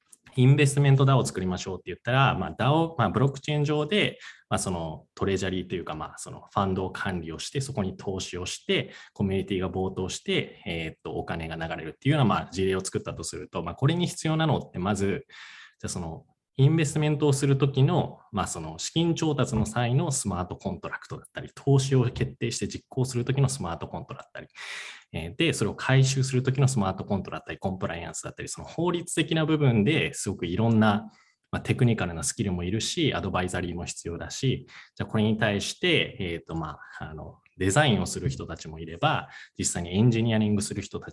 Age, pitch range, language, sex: 20-39, 95-140 Hz, Japanese, male